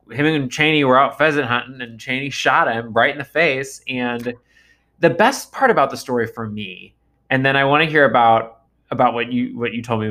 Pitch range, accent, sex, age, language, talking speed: 115-150 Hz, American, male, 20-39, English, 225 wpm